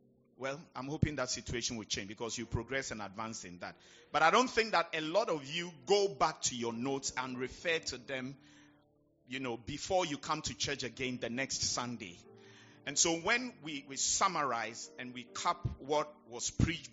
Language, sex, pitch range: English, male, 120-160 Hz